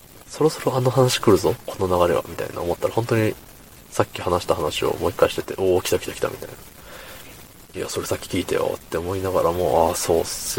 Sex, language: male, Japanese